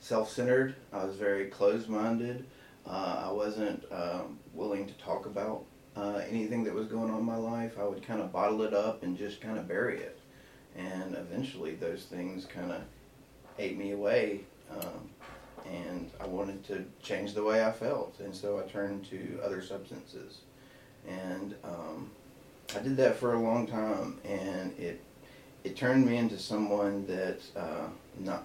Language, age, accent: English, 30-49, American